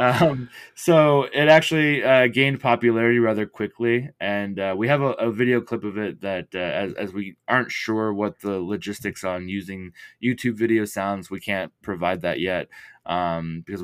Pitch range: 95-120 Hz